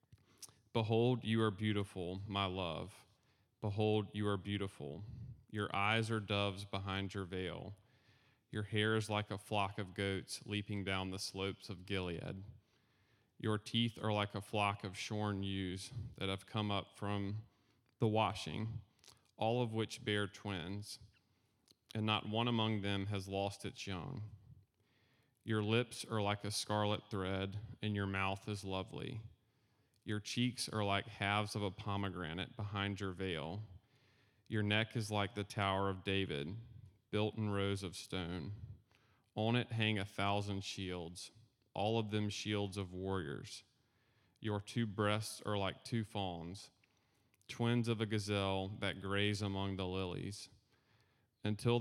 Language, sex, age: English, male, 30-49